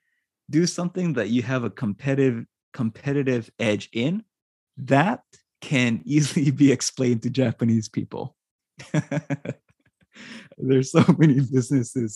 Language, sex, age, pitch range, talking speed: English, male, 20-39, 115-145 Hz, 110 wpm